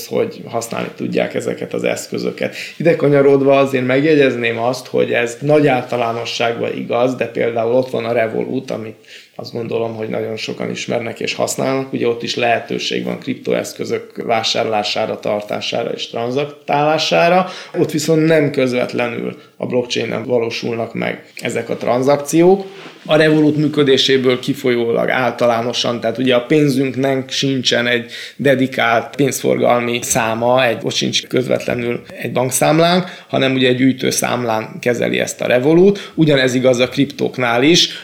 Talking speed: 130 wpm